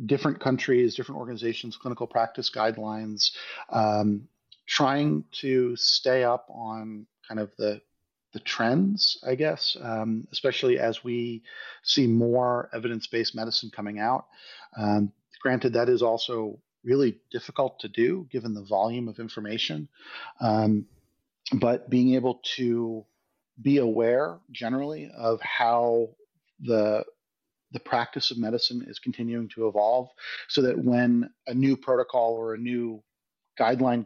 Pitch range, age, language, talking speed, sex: 110-120 Hz, 40-59, English, 130 wpm, male